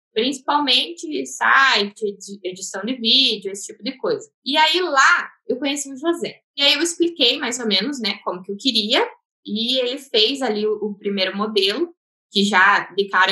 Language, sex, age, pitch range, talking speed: Portuguese, female, 10-29, 185-245 Hz, 175 wpm